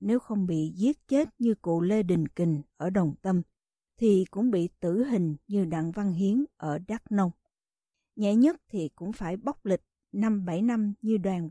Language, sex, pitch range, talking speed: Vietnamese, female, 185-245 Hz, 195 wpm